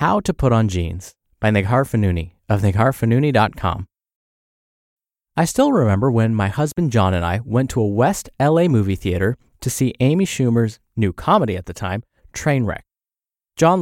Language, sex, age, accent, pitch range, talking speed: English, male, 30-49, American, 100-155 Hz, 160 wpm